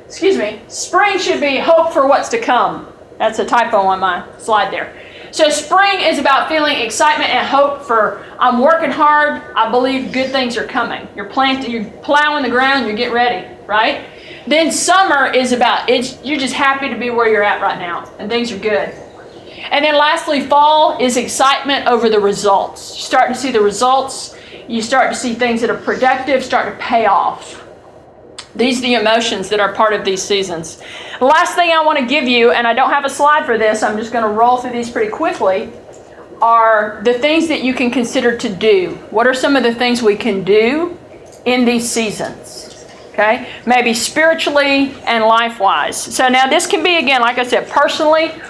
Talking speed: 200 wpm